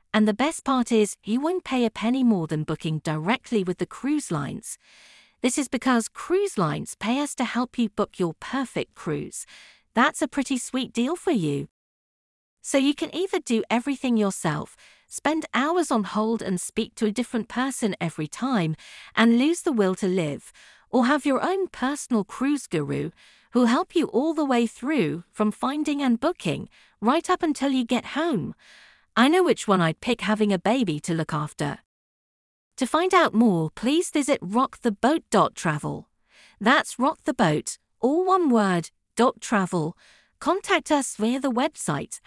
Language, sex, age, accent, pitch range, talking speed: English, female, 50-69, British, 210-295 Hz, 170 wpm